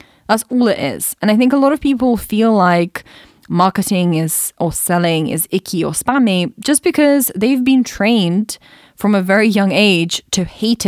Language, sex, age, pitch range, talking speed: English, female, 20-39, 175-225 Hz, 180 wpm